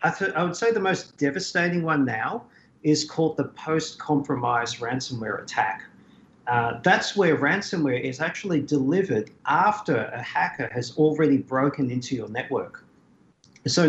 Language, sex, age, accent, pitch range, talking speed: English, male, 40-59, Australian, 130-165 Hz, 145 wpm